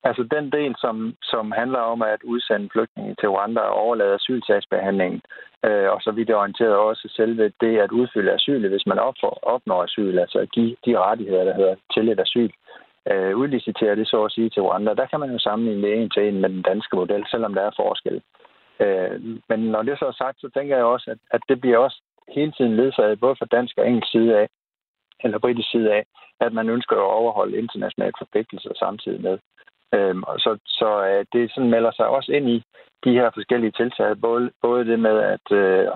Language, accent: Danish, native